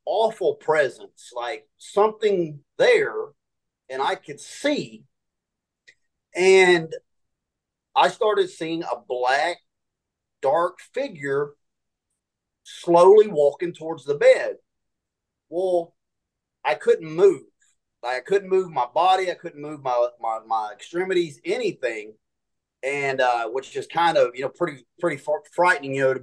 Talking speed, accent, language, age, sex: 125 wpm, American, English, 30-49, male